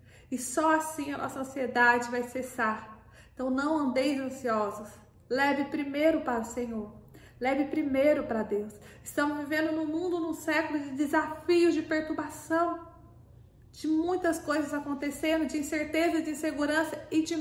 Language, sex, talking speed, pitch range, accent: Portuguese, female, 140 wpm, 225-285 Hz, Brazilian